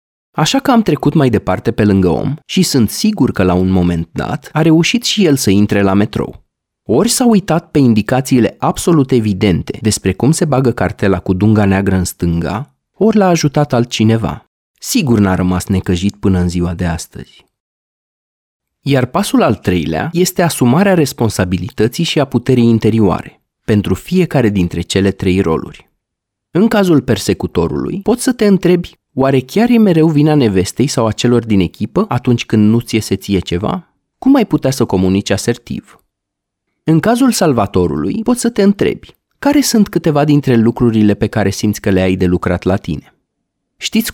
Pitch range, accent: 100-155 Hz, native